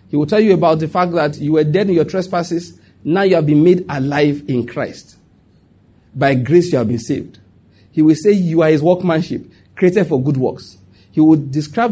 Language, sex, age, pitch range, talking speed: English, male, 40-59, 135-175 Hz, 210 wpm